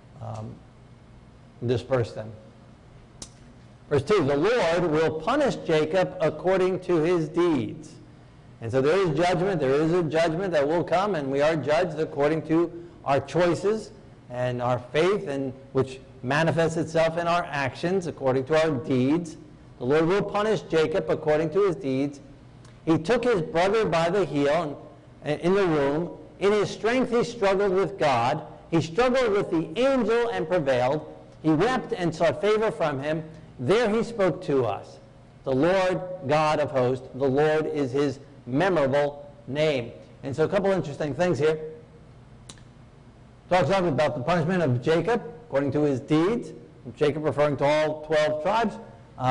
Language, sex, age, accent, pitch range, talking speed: English, male, 50-69, American, 135-180 Hz, 155 wpm